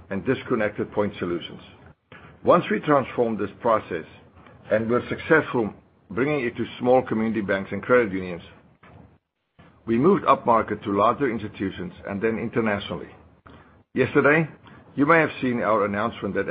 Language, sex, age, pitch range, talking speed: English, male, 60-79, 100-120 Hz, 140 wpm